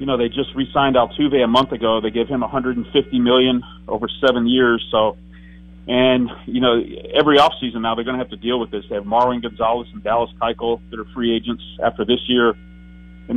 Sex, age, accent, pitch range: male, 40-59, American, 105-125 Hz